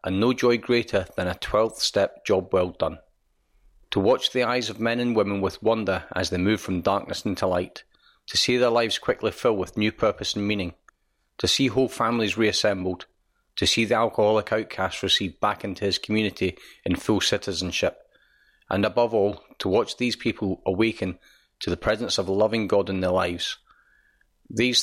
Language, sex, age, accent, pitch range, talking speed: English, male, 40-59, British, 95-115 Hz, 185 wpm